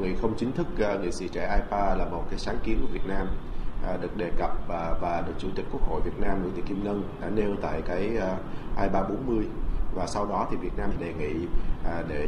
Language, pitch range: Vietnamese, 85-105 Hz